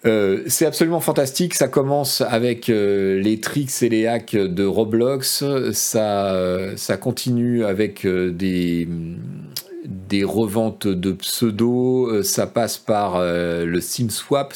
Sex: male